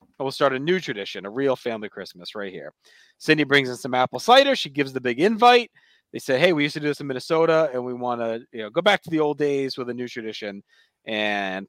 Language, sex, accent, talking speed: English, male, American, 250 wpm